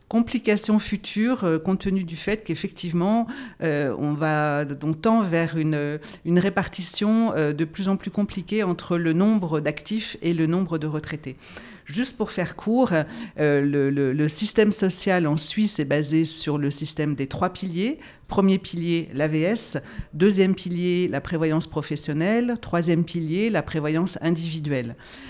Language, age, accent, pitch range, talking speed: French, 50-69, French, 155-200 Hz, 155 wpm